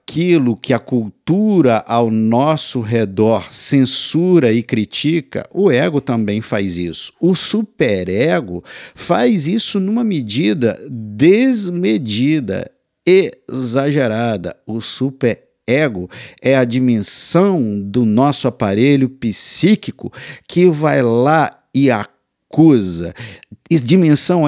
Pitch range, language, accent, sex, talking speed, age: 115-165 Hz, Portuguese, Brazilian, male, 100 wpm, 50-69